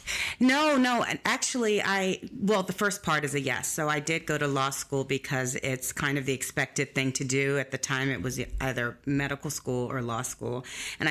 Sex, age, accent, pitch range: female, 30-49, American, 130-155 Hz